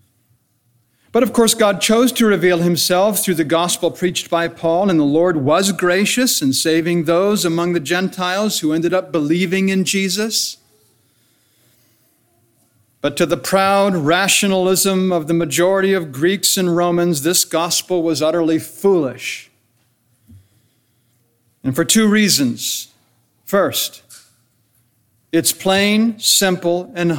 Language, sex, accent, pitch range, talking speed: English, male, American, 120-195 Hz, 125 wpm